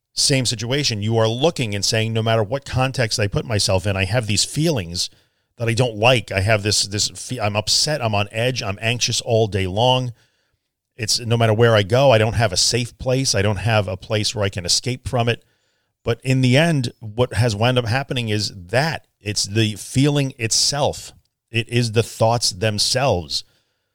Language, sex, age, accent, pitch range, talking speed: English, male, 40-59, American, 105-125 Hz, 200 wpm